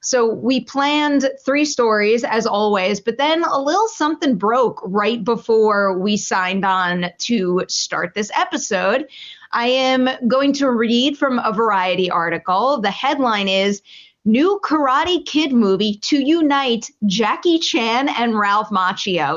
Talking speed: 140 wpm